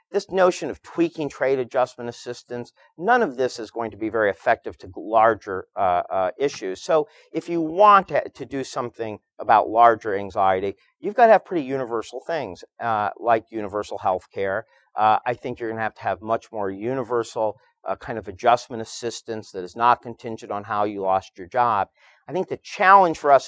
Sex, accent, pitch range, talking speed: male, American, 105-135 Hz, 195 wpm